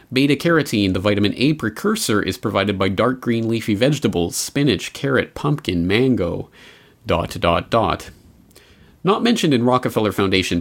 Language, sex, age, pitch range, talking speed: English, male, 30-49, 95-135 Hz, 135 wpm